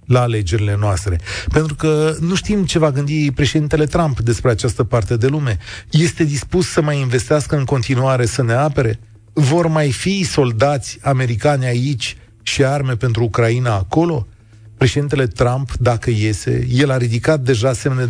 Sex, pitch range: male, 110-150 Hz